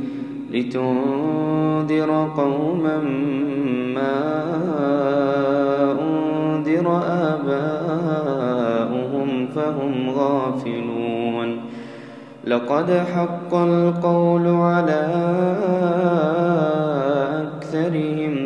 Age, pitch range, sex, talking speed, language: 20-39, 130-155 Hz, male, 40 wpm, Arabic